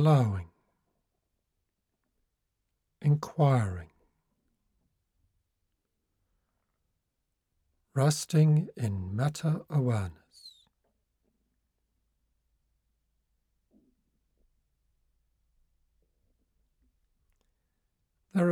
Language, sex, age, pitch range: English, male, 60-79, 90-145 Hz